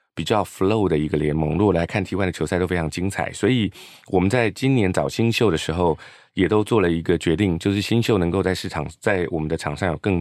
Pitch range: 85-105 Hz